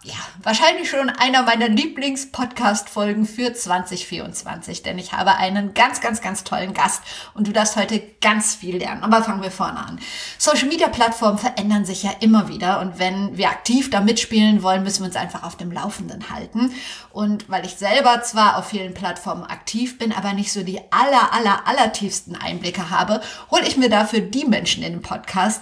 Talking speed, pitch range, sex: 185 wpm, 195-230 Hz, female